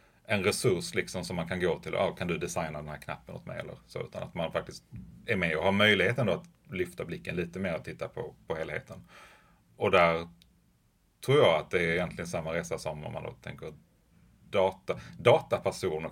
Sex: male